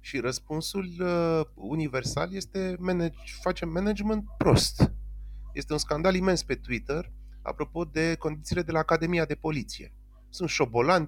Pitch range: 125-190 Hz